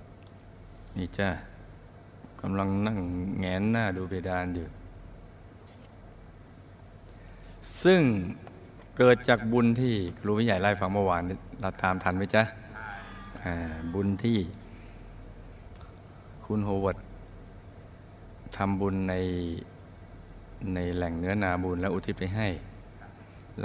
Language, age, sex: Thai, 60-79, male